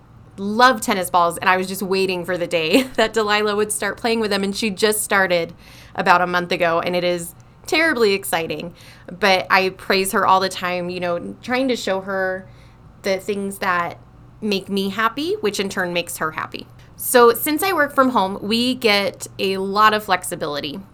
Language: English